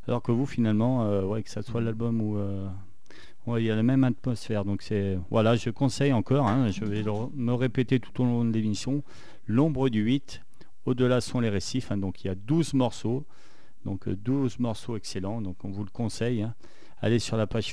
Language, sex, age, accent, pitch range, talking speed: French, male, 40-59, French, 105-125 Hz, 220 wpm